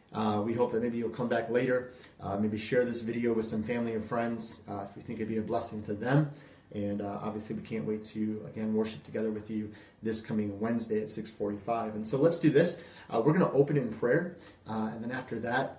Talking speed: 240 wpm